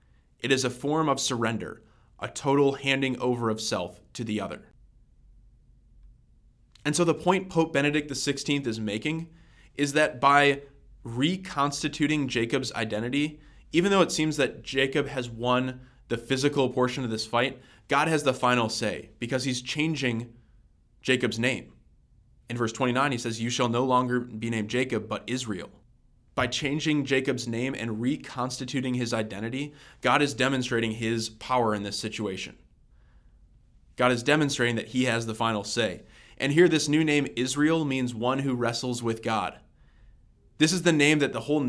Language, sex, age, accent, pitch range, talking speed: English, male, 20-39, American, 115-140 Hz, 160 wpm